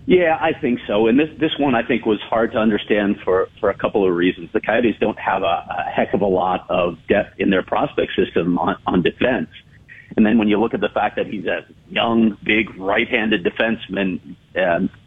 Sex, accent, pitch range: male, American, 105-120 Hz